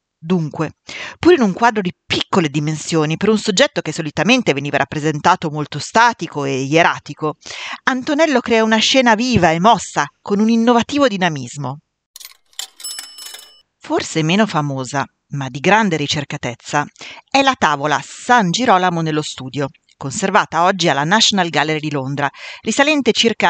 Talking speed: 135 wpm